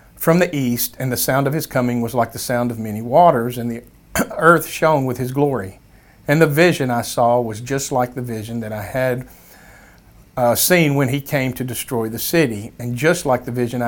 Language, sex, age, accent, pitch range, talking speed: English, male, 50-69, American, 115-145 Hz, 215 wpm